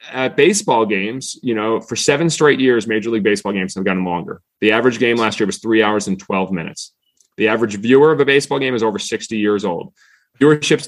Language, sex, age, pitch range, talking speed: English, male, 30-49, 110-140 Hz, 225 wpm